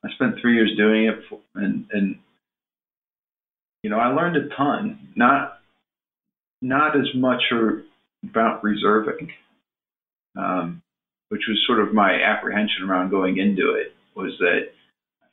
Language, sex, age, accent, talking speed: English, male, 40-59, American, 135 wpm